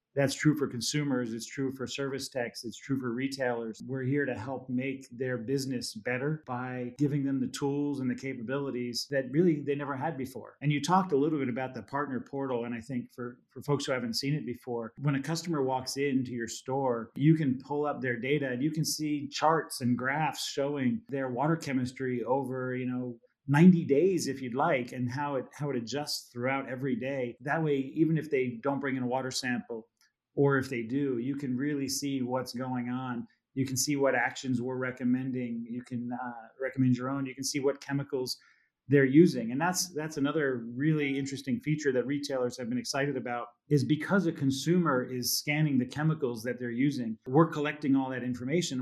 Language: English